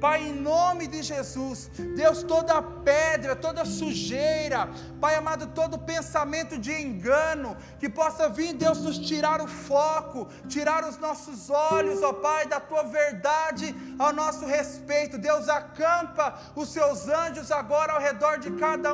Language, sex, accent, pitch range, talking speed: Portuguese, male, Brazilian, 295-320 Hz, 145 wpm